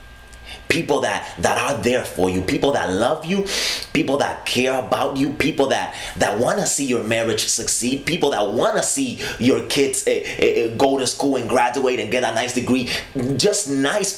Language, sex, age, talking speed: English, male, 30-49, 195 wpm